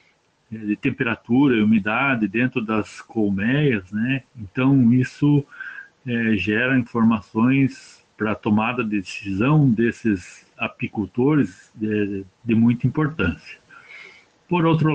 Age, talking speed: 60-79, 100 wpm